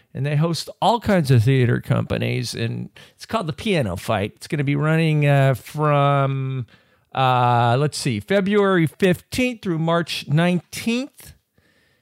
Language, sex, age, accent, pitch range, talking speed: English, male, 40-59, American, 120-170 Hz, 145 wpm